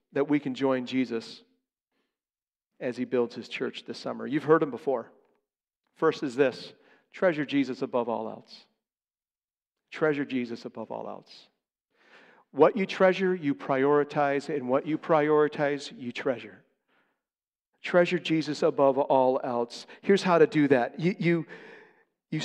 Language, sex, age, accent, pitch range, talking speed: English, male, 50-69, American, 135-195 Hz, 140 wpm